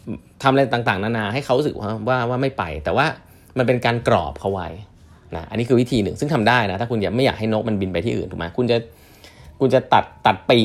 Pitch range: 90-130 Hz